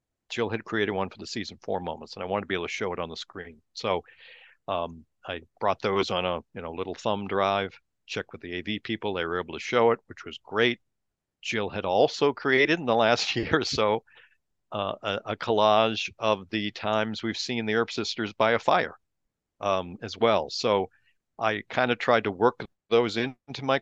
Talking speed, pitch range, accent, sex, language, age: 215 wpm, 90-120 Hz, American, male, English, 50-69